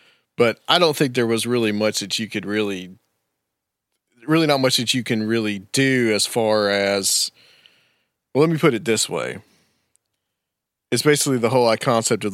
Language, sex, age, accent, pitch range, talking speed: English, male, 40-59, American, 95-120 Hz, 175 wpm